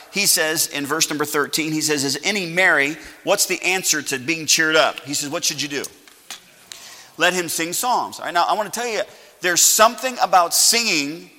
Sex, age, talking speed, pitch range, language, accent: male, 40-59, 210 wpm, 145-195 Hz, English, American